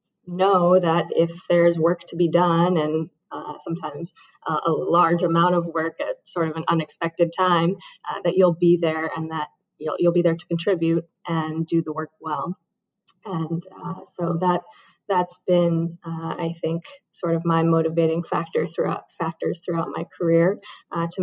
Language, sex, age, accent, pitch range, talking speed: English, female, 20-39, American, 160-180 Hz, 175 wpm